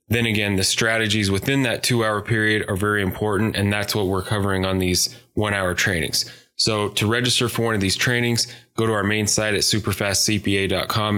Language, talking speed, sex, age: English, 200 wpm, male, 10-29